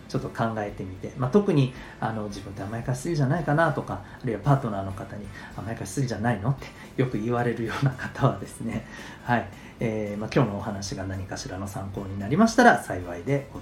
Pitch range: 105-145 Hz